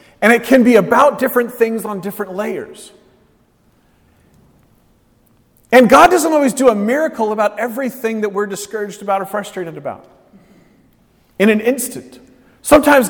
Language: English